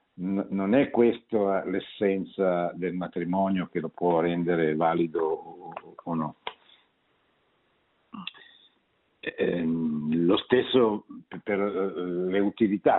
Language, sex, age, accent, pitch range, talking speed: Italian, male, 50-69, native, 85-105 Hz, 90 wpm